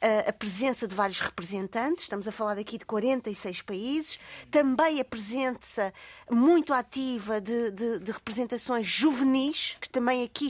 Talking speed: 135 wpm